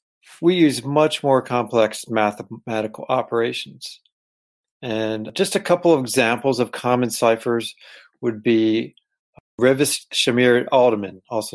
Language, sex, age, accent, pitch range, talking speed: English, male, 40-59, American, 110-140 Hz, 115 wpm